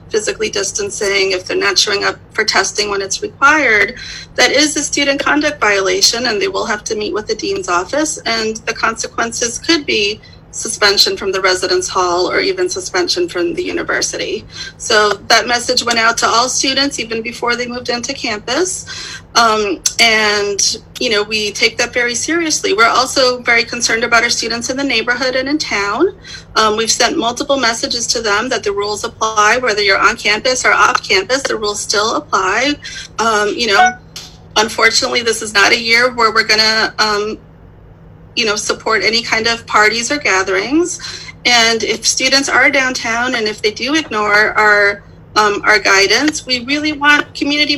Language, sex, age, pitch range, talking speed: English, female, 30-49, 215-295 Hz, 175 wpm